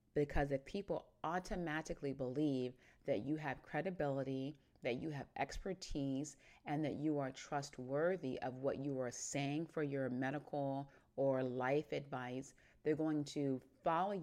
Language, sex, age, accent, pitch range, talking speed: English, female, 30-49, American, 130-150 Hz, 140 wpm